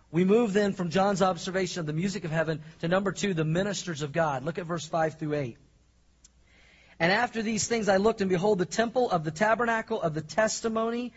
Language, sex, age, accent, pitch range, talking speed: English, male, 40-59, American, 160-205 Hz, 215 wpm